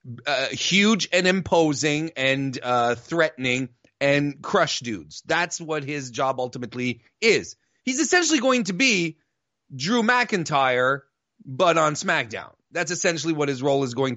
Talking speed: 140 wpm